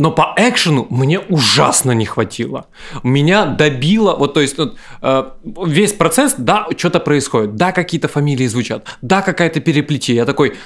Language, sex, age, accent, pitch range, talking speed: Russian, male, 20-39, native, 125-175 Hz, 150 wpm